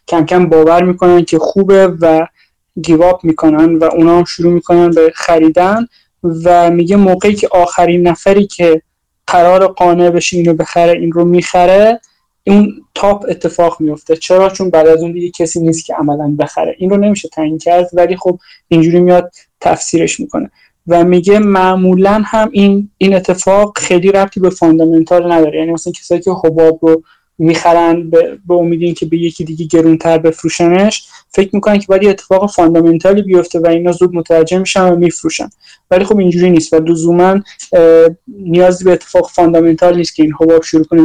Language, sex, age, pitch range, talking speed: Persian, male, 20-39, 165-185 Hz, 165 wpm